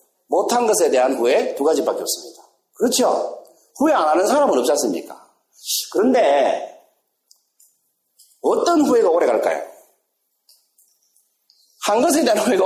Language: Korean